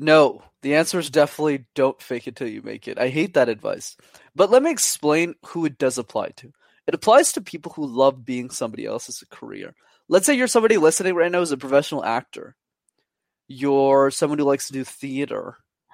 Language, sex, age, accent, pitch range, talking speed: English, male, 20-39, American, 135-195 Hz, 200 wpm